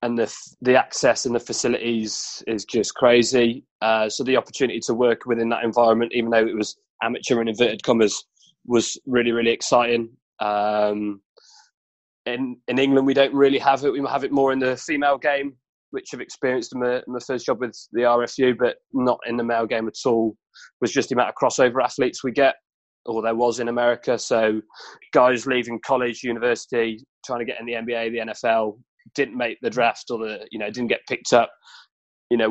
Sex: male